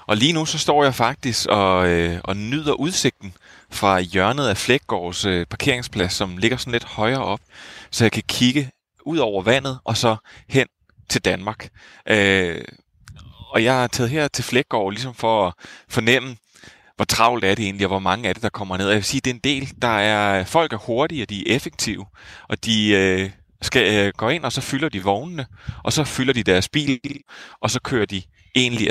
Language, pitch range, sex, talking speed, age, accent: Danish, 95-125 Hz, male, 210 wpm, 30-49, native